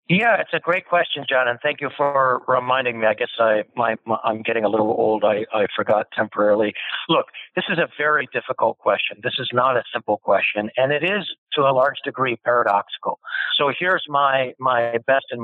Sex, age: male, 60-79